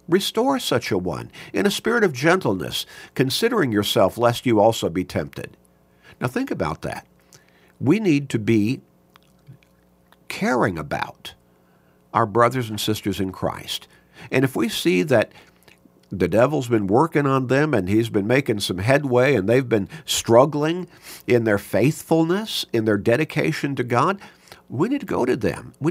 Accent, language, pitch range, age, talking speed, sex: American, English, 90-135 Hz, 50-69, 155 wpm, male